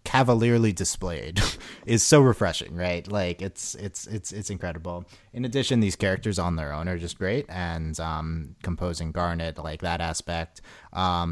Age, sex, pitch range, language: 30-49, male, 85-105 Hz, English